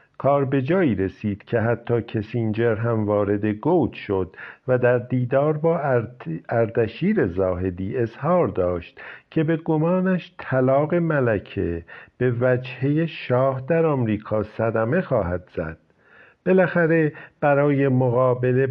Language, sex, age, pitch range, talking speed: Persian, male, 50-69, 105-145 Hz, 110 wpm